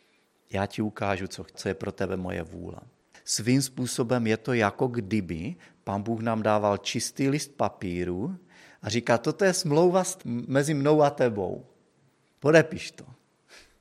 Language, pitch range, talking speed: Czech, 100-135 Hz, 145 wpm